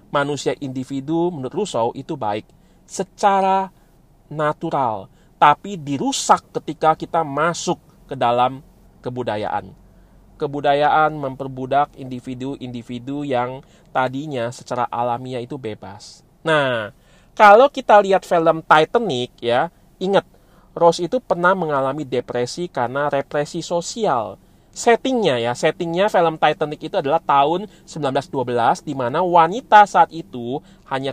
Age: 30-49